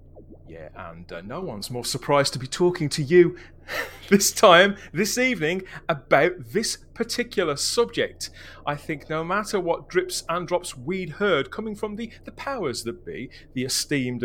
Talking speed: 165 wpm